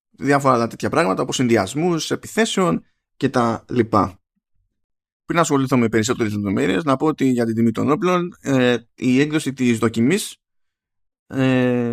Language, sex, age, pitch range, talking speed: Greek, male, 20-39, 105-140 Hz, 145 wpm